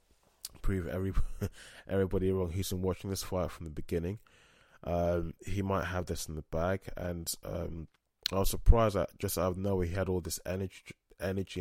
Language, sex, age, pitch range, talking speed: English, male, 20-39, 85-95 Hz, 190 wpm